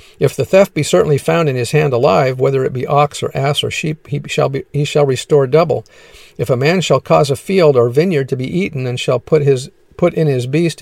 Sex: male